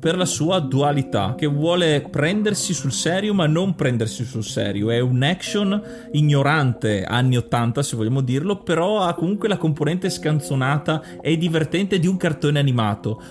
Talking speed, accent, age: 160 wpm, native, 30-49